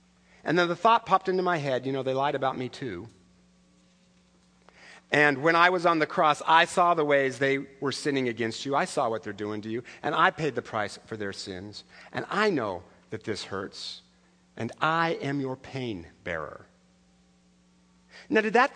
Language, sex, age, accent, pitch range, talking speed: English, male, 50-69, American, 135-215 Hz, 195 wpm